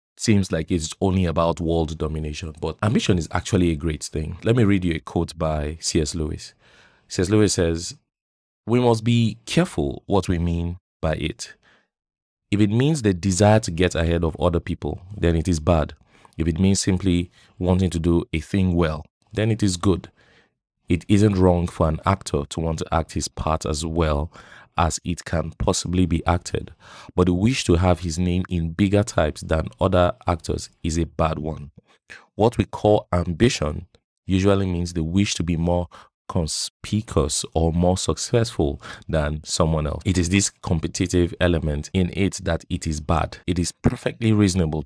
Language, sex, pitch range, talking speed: English, male, 80-100 Hz, 180 wpm